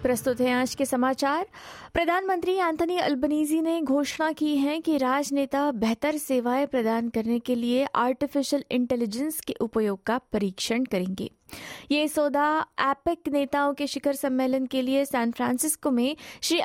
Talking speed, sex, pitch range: 145 wpm, female, 235-290 Hz